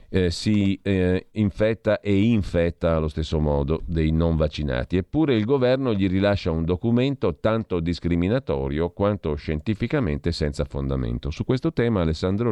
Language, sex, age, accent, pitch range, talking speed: Italian, male, 50-69, native, 75-105 Hz, 140 wpm